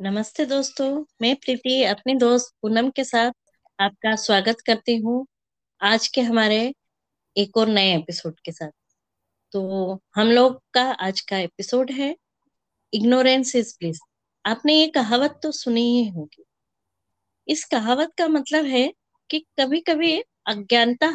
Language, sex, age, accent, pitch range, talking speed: Hindi, female, 20-39, native, 200-270 Hz, 140 wpm